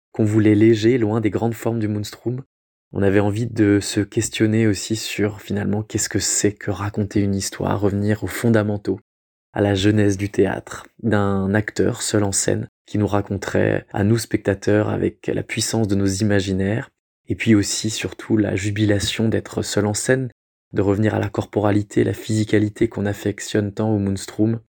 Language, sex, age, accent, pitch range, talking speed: French, male, 20-39, French, 100-115 Hz, 175 wpm